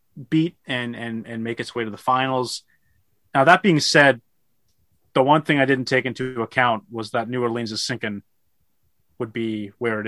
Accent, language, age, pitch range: American, English, 30-49, 105-130 Hz